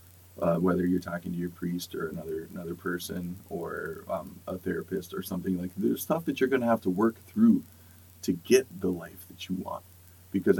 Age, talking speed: 30-49, 205 wpm